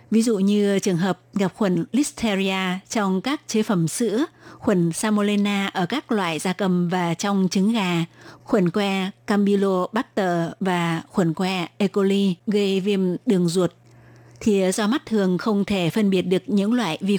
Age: 20-39